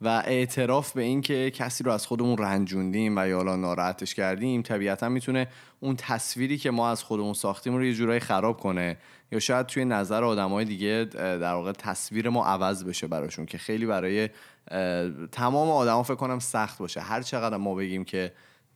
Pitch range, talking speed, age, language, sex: 95-125 Hz, 175 wpm, 20-39, Persian, male